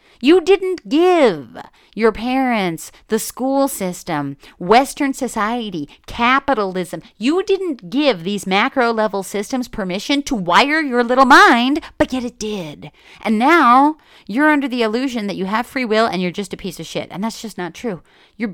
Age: 40-59